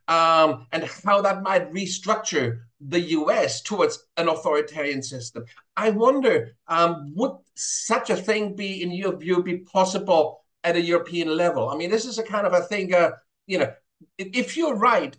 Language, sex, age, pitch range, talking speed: English, male, 50-69, 160-210 Hz, 175 wpm